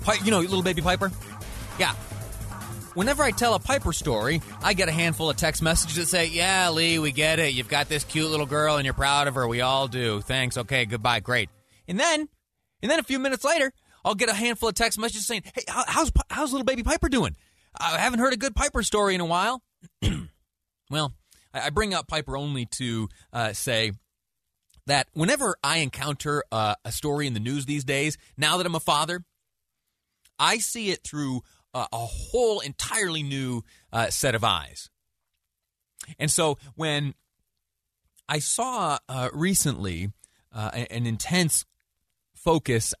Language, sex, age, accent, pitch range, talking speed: English, male, 30-49, American, 110-175 Hz, 175 wpm